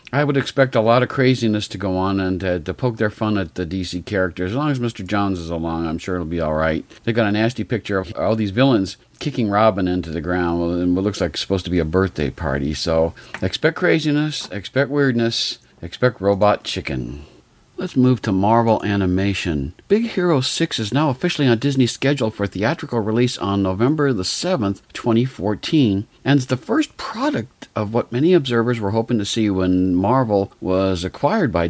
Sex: male